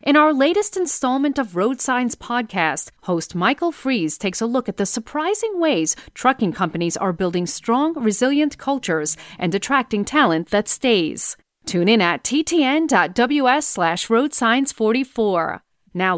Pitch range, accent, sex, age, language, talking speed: 180-250 Hz, American, female, 40-59, English, 135 wpm